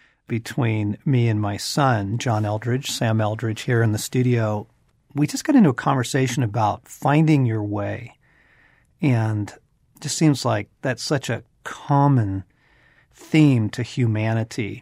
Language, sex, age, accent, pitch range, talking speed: English, male, 40-59, American, 110-140 Hz, 140 wpm